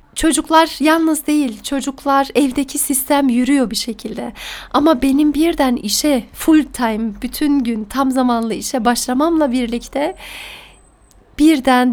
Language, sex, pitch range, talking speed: Turkish, female, 250-295 Hz, 115 wpm